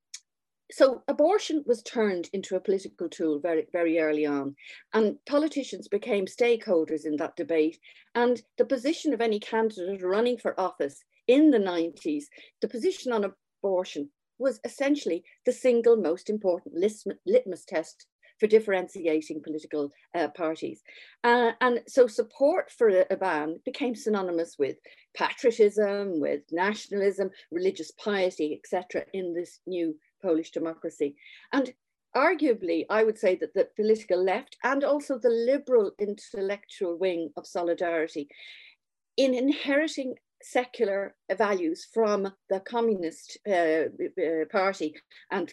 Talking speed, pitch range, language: 125 wpm, 175-250 Hz, English